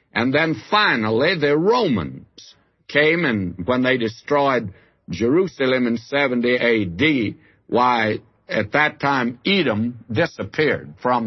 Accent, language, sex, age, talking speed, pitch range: American, English, male, 60-79, 110 wpm, 110-140 Hz